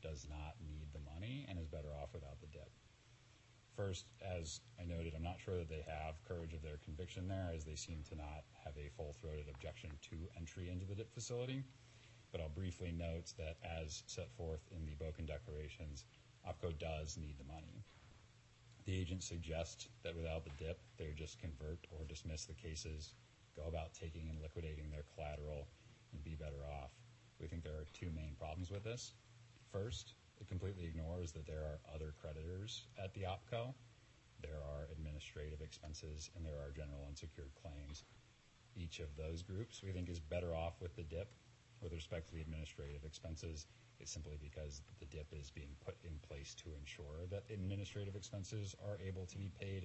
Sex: male